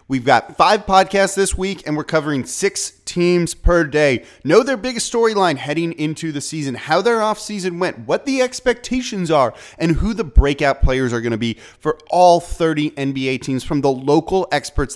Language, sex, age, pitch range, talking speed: English, male, 30-49, 125-180 Hz, 190 wpm